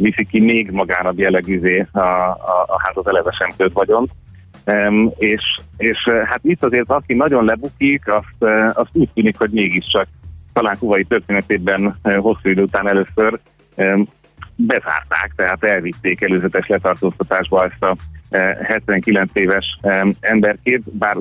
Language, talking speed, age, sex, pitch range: Hungarian, 135 wpm, 30-49, male, 95-110 Hz